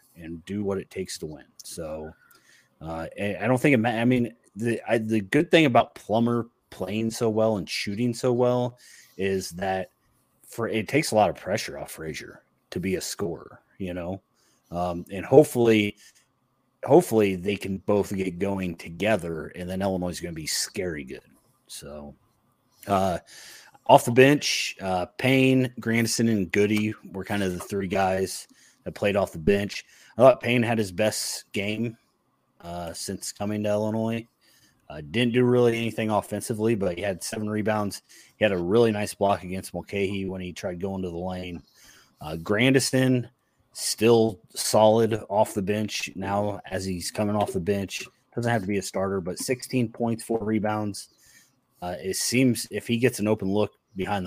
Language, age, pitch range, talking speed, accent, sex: English, 30-49, 95-115 Hz, 175 wpm, American, male